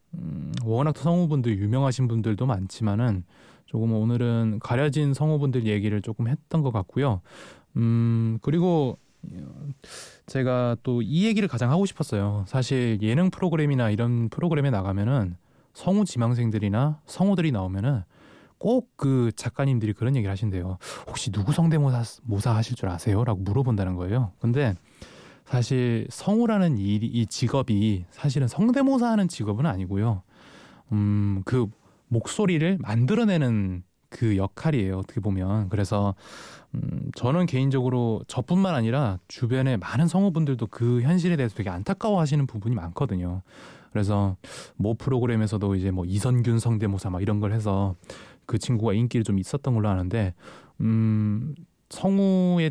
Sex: male